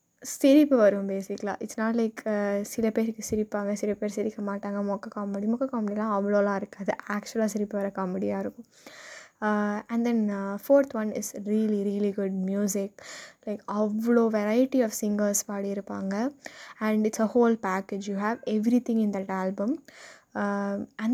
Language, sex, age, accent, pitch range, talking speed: Tamil, female, 20-39, native, 205-235 Hz, 165 wpm